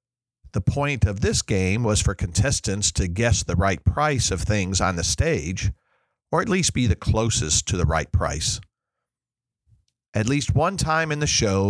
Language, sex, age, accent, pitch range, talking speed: English, male, 50-69, American, 95-120 Hz, 180 wpm